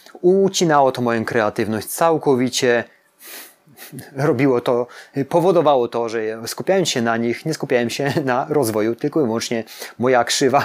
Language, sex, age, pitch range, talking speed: Polish, male, 30-49, 115-160 Hz, 135 wpm